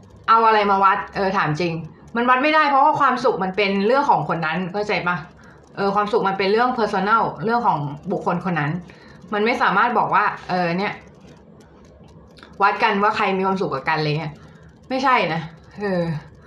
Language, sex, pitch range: Thai, female, 170-225 Hz